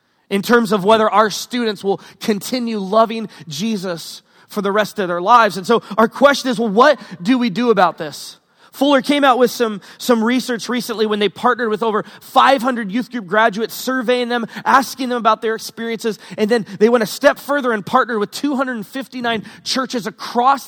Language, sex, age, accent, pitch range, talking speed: English, male, 30-49, American, 185-245 Hz, 190 wpm